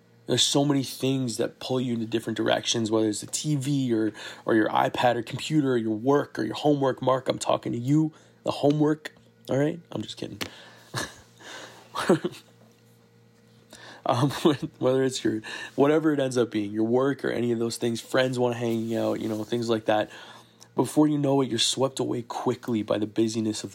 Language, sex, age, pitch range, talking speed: English, male, 20-39, 115-135 Hz, 190 wpm